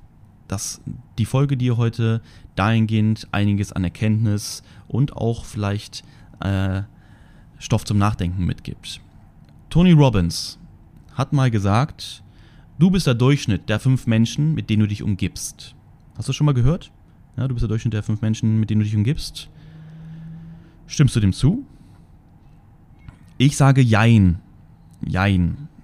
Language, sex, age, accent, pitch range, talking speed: German, male, 30-49, German, 100-130 Hz, 140 wpm